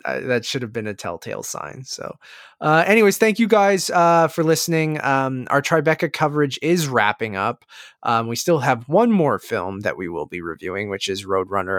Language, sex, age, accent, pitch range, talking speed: English, male, 20-39, American, 115-160 Hz, 200 wpm